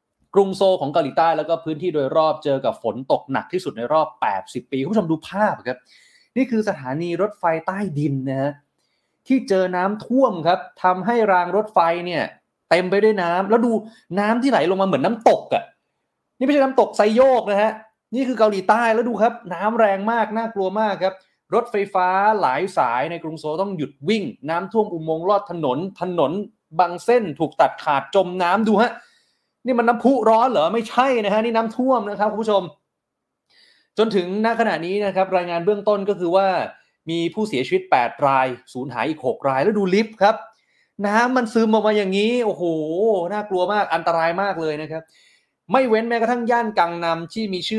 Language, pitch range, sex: Thai, 165-220 Hz, male